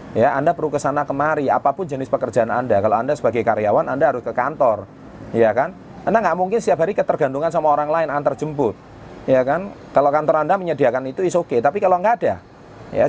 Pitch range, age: 115-160 Hz, 30-49